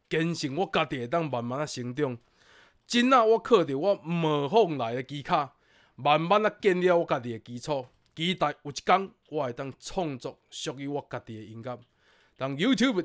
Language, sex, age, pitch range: Chinese, male, 20-39, 120-170 Hz